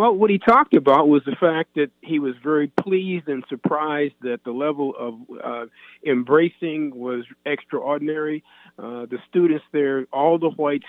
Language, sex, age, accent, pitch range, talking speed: English, male, 50-69, American, 130-155 Hz, 165 wpm